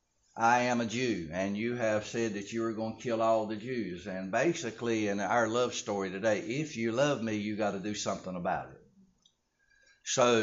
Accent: American